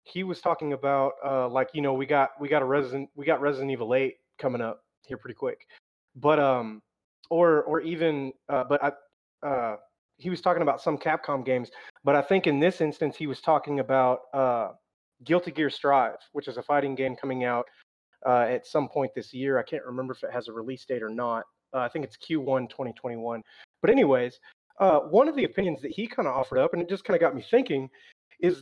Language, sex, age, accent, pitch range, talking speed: English, male, 30-49, American, 135-180 Hz, 220 wpm